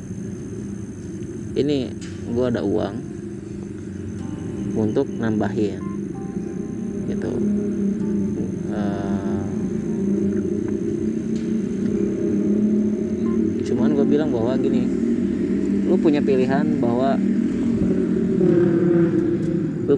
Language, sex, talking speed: Indonesian, male, 55 wpm